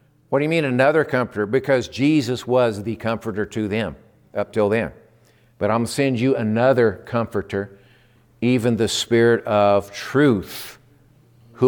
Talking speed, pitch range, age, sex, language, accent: 145 wpm, 110-130 Hz, 50-69, male, English, American